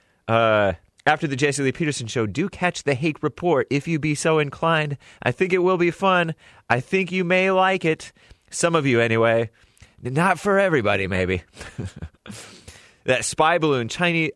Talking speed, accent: 170 wpm, American